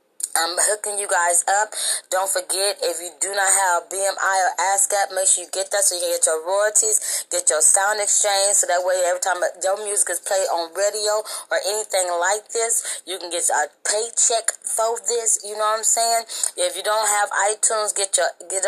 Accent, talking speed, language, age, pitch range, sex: American, 210 wpm, English, 20-39, 175-215 Hz, female